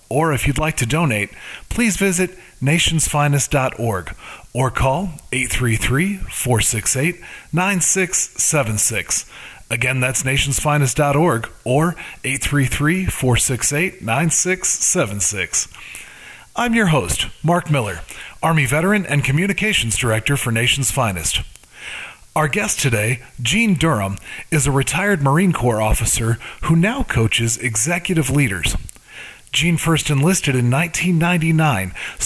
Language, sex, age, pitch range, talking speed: English, male, 30-49, 120-160 Hz, 95 wpm